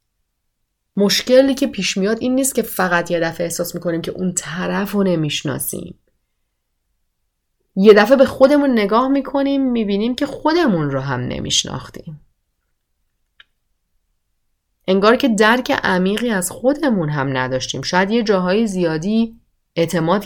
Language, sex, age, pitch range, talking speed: Persian, female, 30-49, 160-210 Hz, 125 wpm